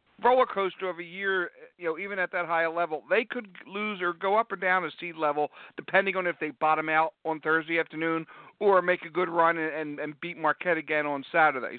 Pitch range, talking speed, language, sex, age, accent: 155-185 Hz, 225 wpm, English, male, 50-69, American